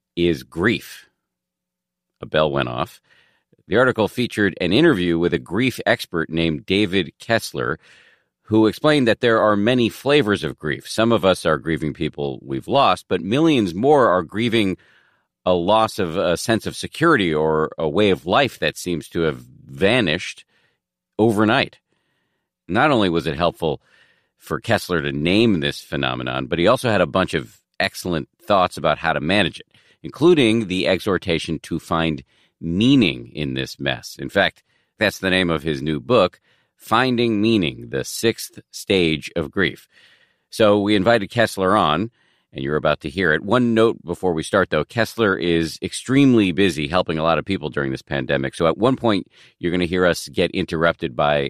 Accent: American